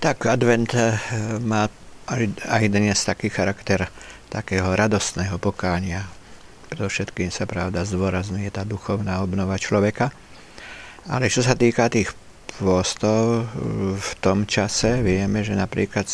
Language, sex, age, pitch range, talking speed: Slovak, male, 50-69, 90-105 Hz, 110 wpm